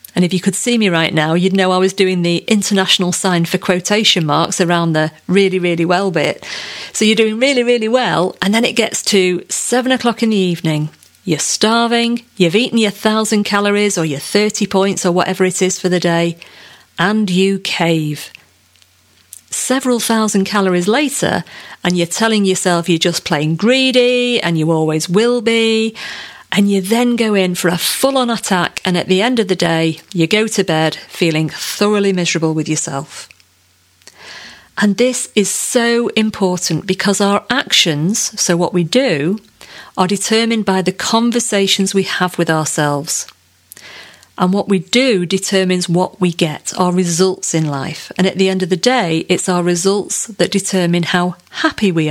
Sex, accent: female, British